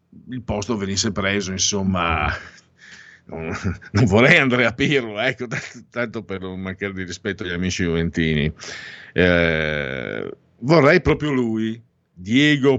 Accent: native